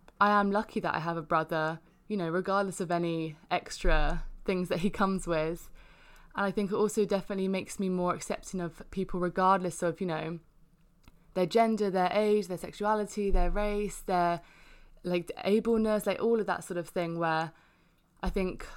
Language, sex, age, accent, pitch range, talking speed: English, female, 20-39, British, 170-200 Hz, 180 wpm